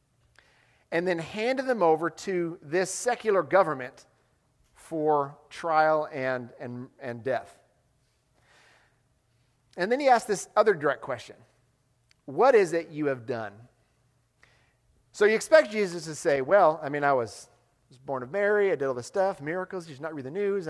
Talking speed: 160 wpm